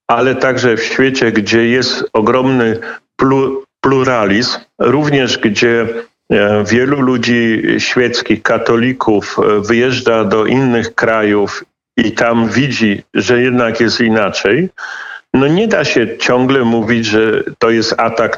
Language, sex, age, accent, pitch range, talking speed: Polish, male, 50-69, native, 115-140 Hz, 115 wpm